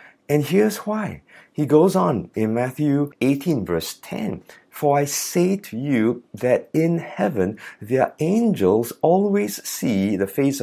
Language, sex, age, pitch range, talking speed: English, male, 50-69, 105-160 Hz, 140 wpm